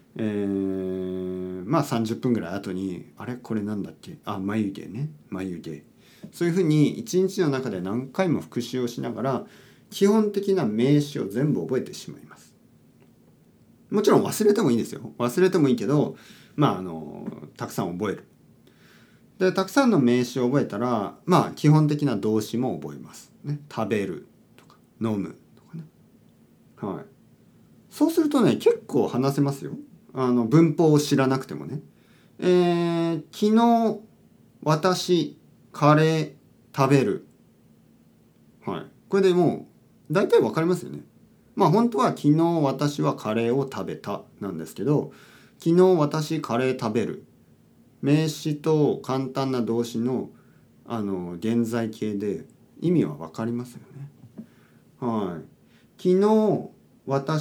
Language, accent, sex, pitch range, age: Japanese, native, male, 115-175 Hz, 40-59